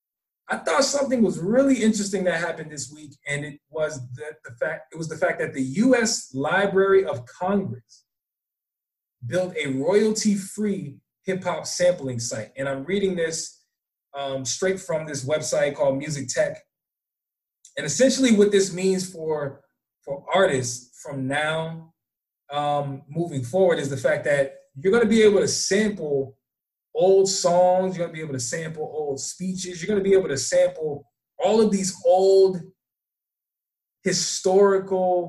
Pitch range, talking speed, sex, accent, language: 140-190 Hz, 155 wpm, male, American, English